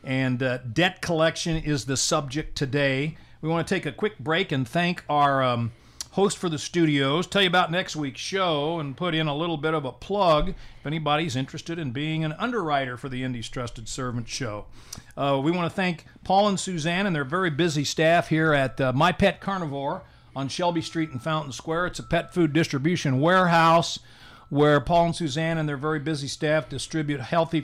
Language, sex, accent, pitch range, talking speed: English, male, American, 140-170 Hz, 200 wpm